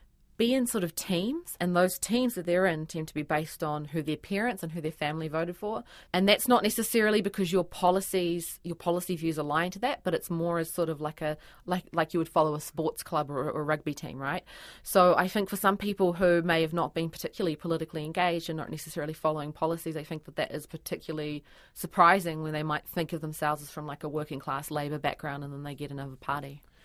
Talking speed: 235 wpm